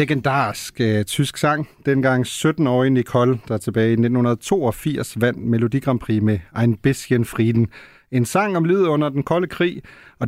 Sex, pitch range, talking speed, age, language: male, 115-155 Hz, 150 wpm, 40-59, Danish